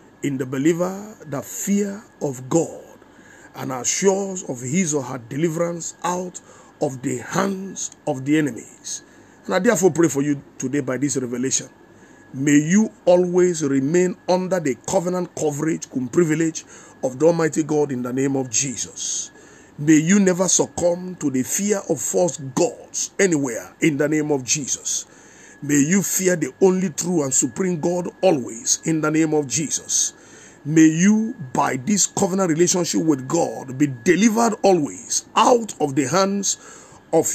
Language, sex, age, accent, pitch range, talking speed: English, male, 50-69, Nigerian, 145-185 Hz, 155 wpm